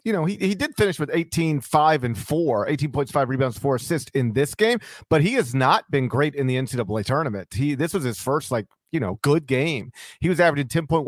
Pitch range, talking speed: 125-160 Hz, 220 wpm